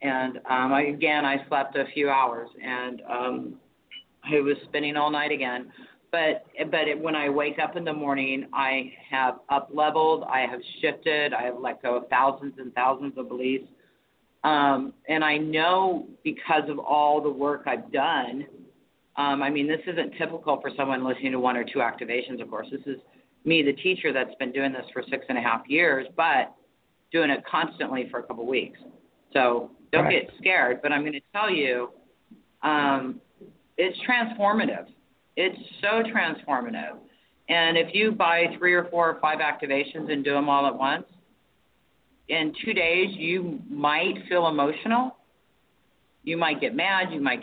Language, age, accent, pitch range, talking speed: English, 40-59, American, 135-160 Hz, 175 wpm